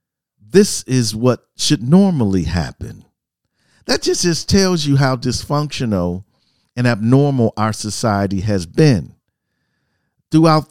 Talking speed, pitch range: 110 wpm, 95-130 Hz